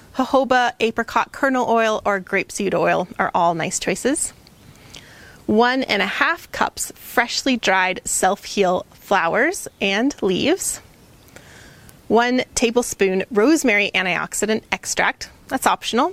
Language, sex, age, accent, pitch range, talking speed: English, female, 30-49, American, 195-260 Hz, 110 wpm